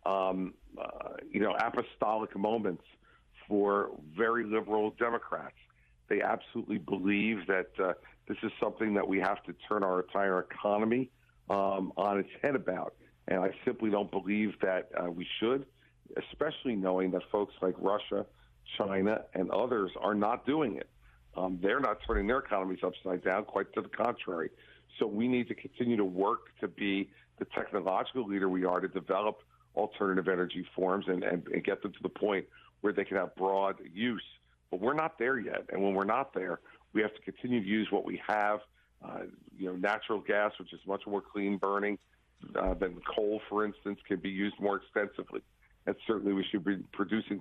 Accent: American